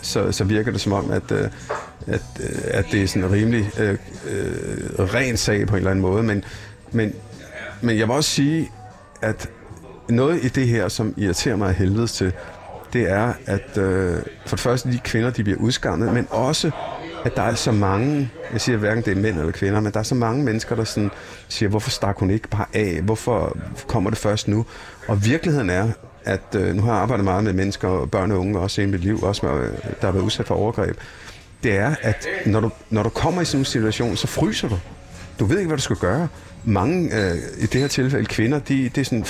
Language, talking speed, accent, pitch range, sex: Danish, 225 wpm, native, 100-120 Hz, male